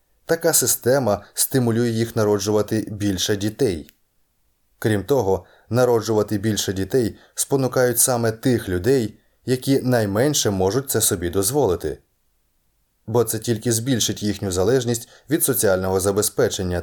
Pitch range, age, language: 100-125 Hz, 20-39, Ukrainian